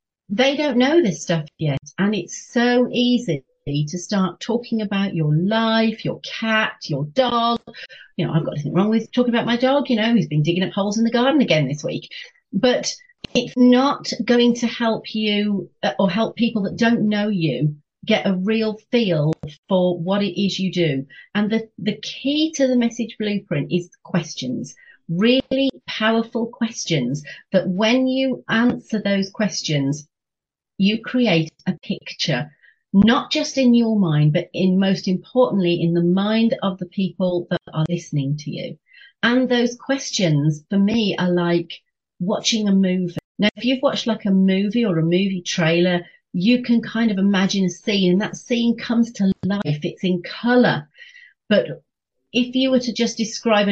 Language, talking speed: English, 175 wpm